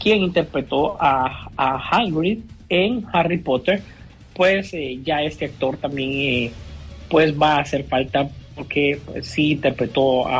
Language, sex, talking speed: Spanish, male, 145 wpm